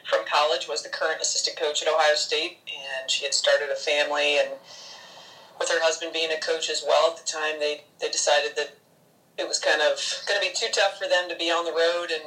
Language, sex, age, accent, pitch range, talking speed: English, female, 30-49, American, 150-175 Hz, 235 wpm